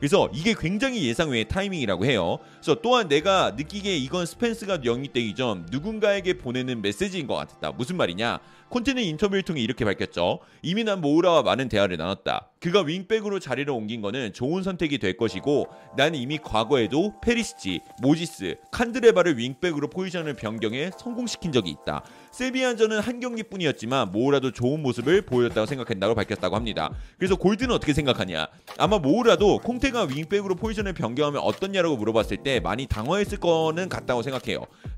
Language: Korean